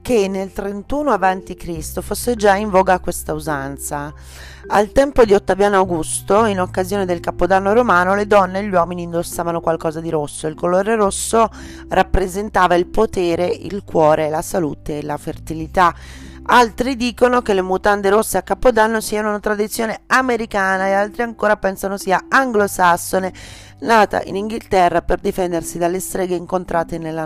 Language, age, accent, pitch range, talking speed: Italian, 30-49, native, 165-200 Hz, 155 wpm